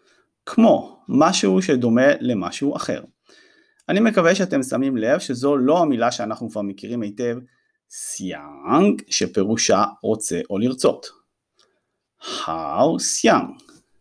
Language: Hebrew